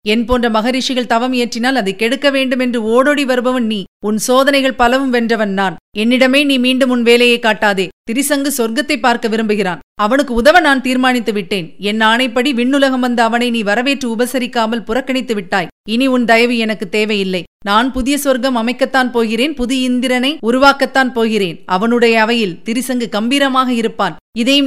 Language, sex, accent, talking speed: Tamil, female, native, 145 wpm